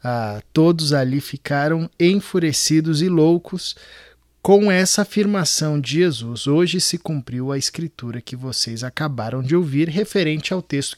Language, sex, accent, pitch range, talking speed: Portuguese, male, Brazilian, 135-170 Hz, 135 wpm